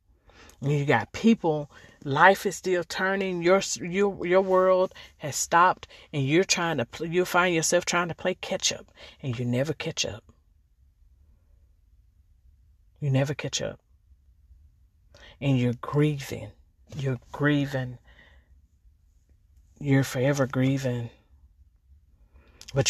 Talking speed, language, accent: 115 wpm, English, American